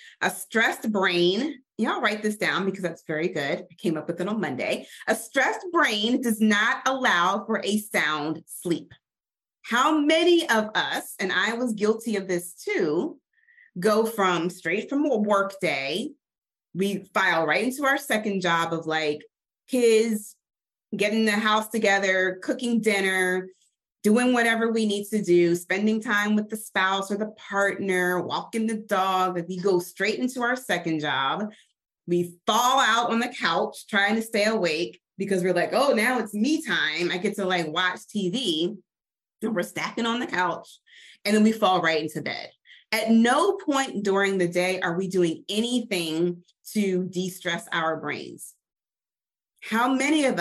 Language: English